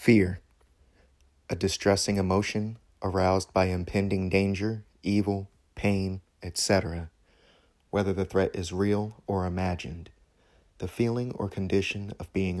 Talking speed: 115 wpm